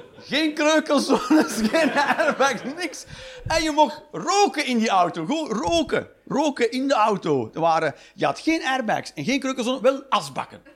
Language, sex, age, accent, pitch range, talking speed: Dutch, male, 40-59, Dutch, 190-310 Hz, 155 wpm